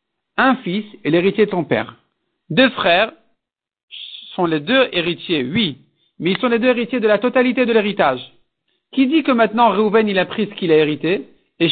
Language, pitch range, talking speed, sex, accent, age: French, 180-235 Hz, 195 wpm, male, French, 50-69